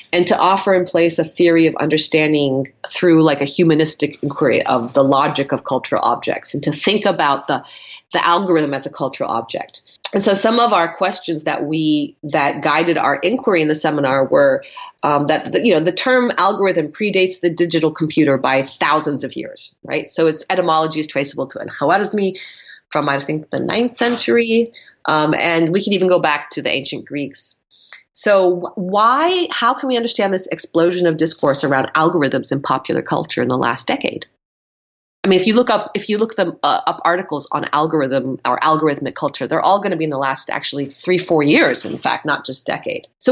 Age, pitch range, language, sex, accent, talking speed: 30-49, 155-210 Hz, English, female, American, 200 wpm